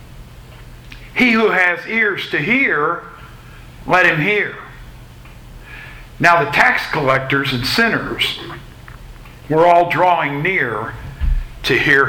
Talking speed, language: 105 wpm, English